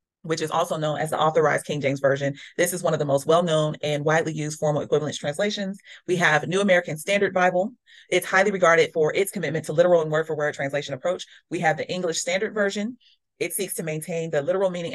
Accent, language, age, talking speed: American, English, 30-49, 215 wpm